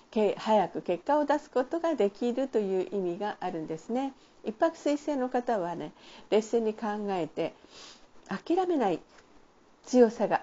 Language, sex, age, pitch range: Japanese, female, 50-69, 185-270 Hz